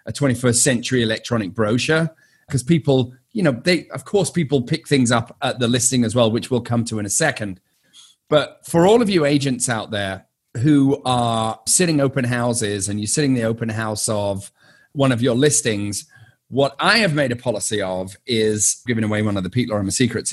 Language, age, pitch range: English, 30-49, 110-145 Hz